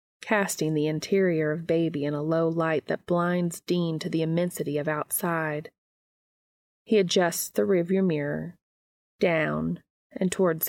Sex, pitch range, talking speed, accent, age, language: female, 160-195 Hz, 140 wpm, American, 30-49, English